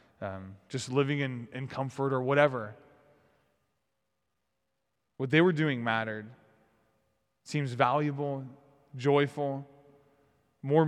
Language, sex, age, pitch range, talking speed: English, male, 20-39, 120-145 Hz, 95 wpm